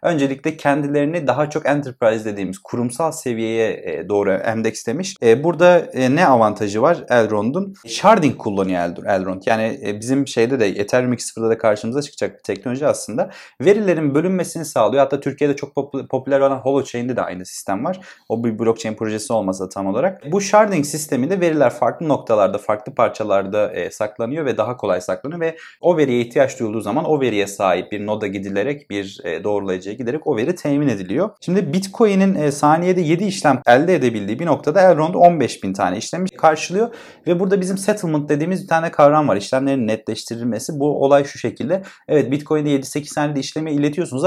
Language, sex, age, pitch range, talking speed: Turkish, male, 30-49, 115-170 Hz, 160 wpm